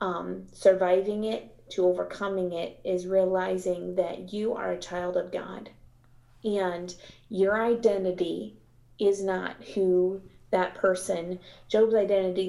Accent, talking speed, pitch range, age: American, 120 wpm, 180-205 Hz, 30-49